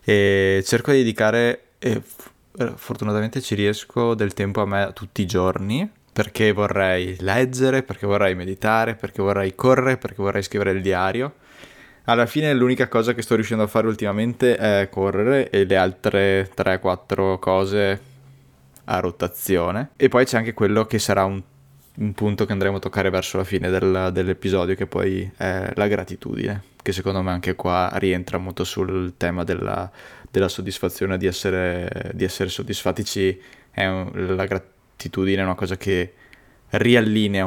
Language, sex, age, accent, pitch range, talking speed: Italian, male, 20-39, native, 95-110 Hz, 155 wpm